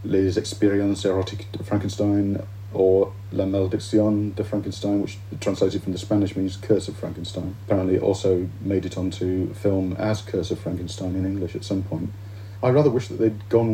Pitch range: 95-105 Hz